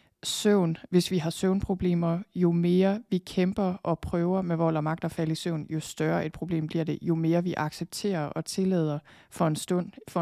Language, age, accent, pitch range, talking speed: Danish, 20-39, native, 160-185 Hz, 205 wpm